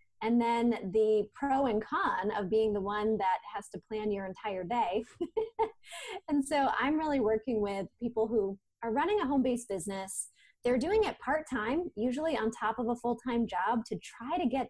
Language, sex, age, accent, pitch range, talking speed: English, female, 20-39, American, 210-265 Hz, 185 wpm